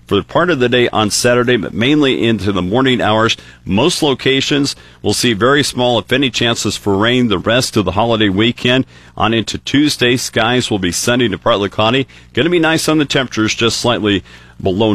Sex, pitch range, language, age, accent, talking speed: male, 100-125 Hz, English, 50-69, American, 200 wpm